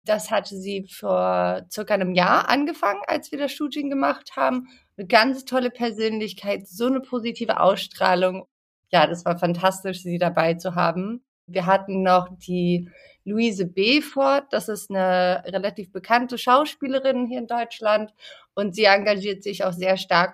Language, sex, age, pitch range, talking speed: German, female, 30-49, 185-240 Hz, 155 wpm